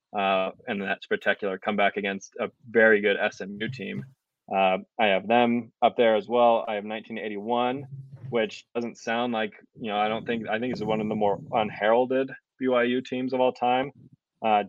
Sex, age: male, 20-39